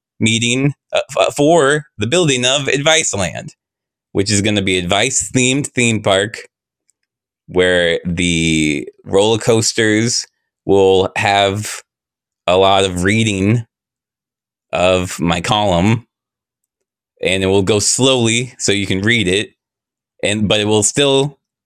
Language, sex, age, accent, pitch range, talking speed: English, male, 20-39, American, 100-140 Hz, 120 wpm